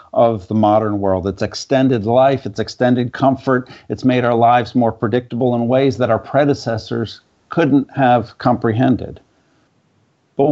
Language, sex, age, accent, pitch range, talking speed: English, male, 50-69, American, 115-135 Hz, 145 wpm